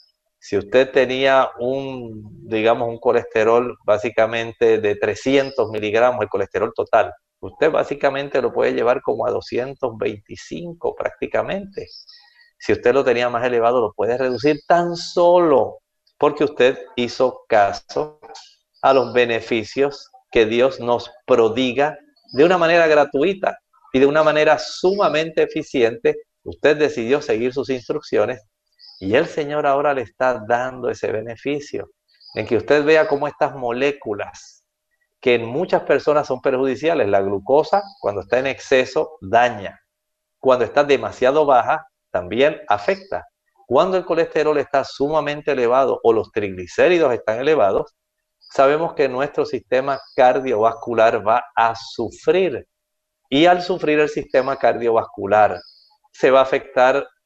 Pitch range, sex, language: 125-205 Hz, male, English